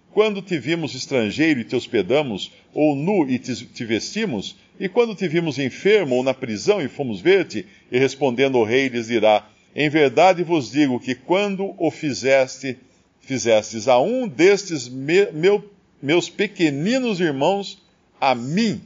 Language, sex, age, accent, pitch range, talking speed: Portuguese, male, 50-69, Brazilian, 135-190 Hz, 155 wpm